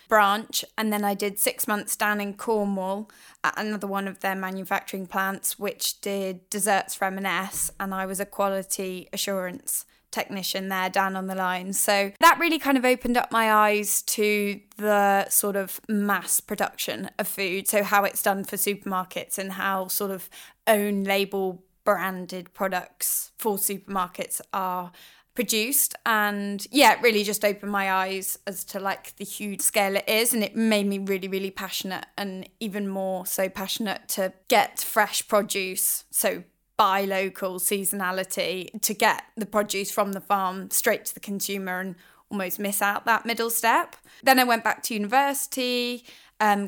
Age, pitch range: 10-29, 190-215 Hz